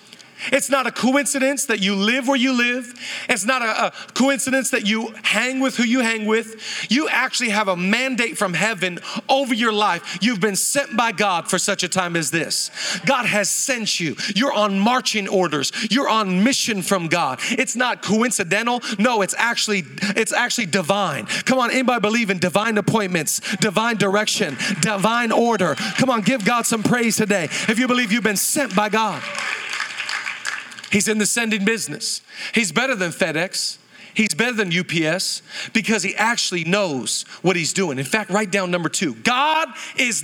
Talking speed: 175 wpm